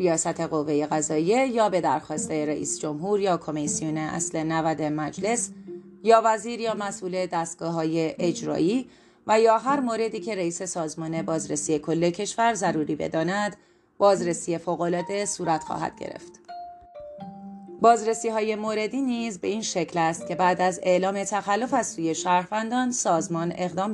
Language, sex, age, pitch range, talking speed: Persian, female, 30-49, 160-215 Hz, 140 wpm